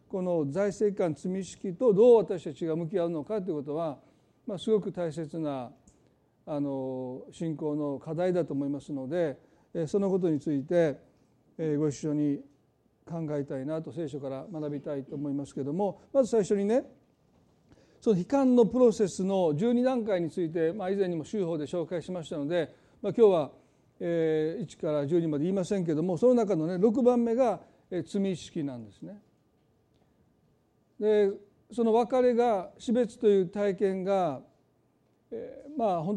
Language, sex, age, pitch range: Japanese, male, 40-59, 155-205 Hz